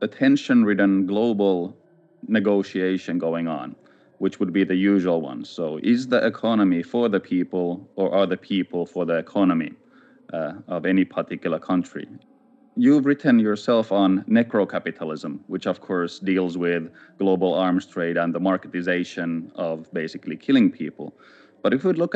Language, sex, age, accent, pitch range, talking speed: English, male, 30-49, Finnish, 90-115 Hz, 150 wpm